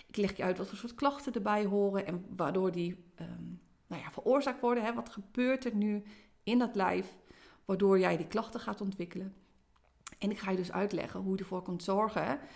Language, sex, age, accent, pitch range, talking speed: Dutch, female, 30-49, Dutch, 185-235 Hz, 185 wpm